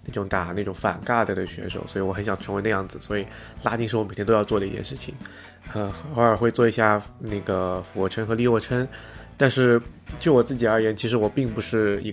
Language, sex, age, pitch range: Chinese, male, 20-39, 105-120 Hz